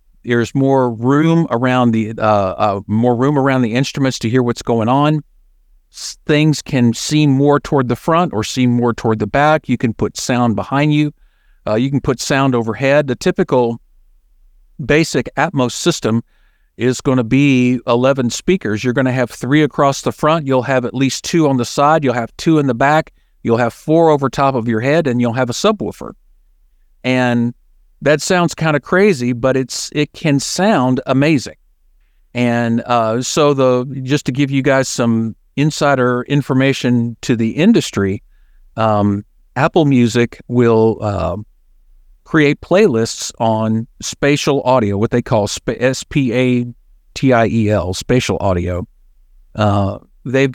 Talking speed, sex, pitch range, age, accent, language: 160 wpm, male, 115-140 Hz, 50-69, American, English